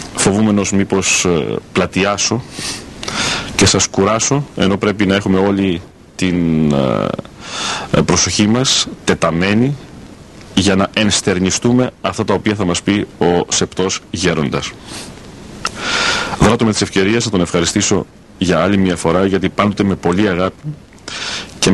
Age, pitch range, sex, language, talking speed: 40-59, 90-115 Hz, male, Greek, 120 wpm